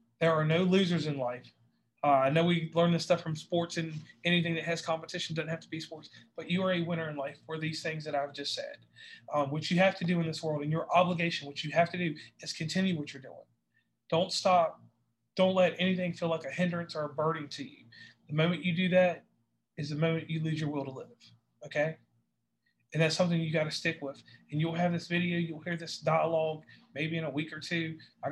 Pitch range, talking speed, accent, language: 145-170 Hz, 240 wpm, American, English